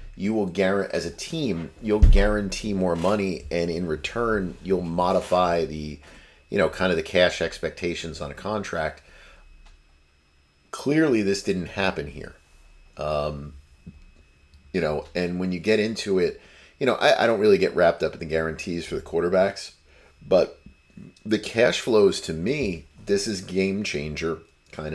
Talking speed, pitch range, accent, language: 160 wpm, 75-100 Hz, American, English